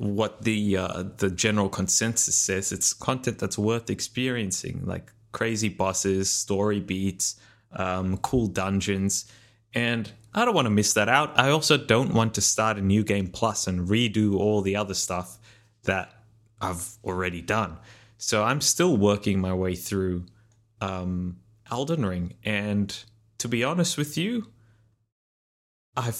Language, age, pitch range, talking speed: English, 20-39, 100-115 Hz, 150 wpm